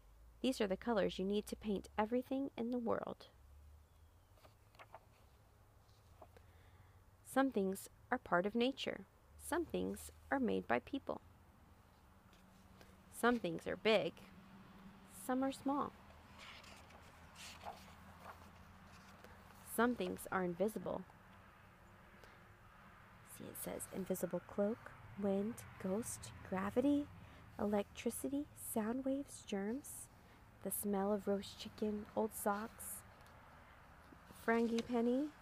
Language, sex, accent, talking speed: English, female, American, 95 wpm